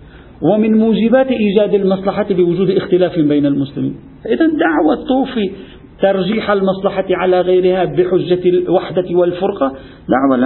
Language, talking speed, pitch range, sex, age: Arabic, 110 wpm, 145-190 Hz, male, 50-69